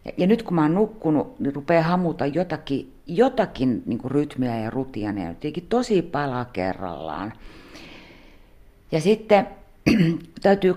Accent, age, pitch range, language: native, 50-69, 120-180 Hz, Finnish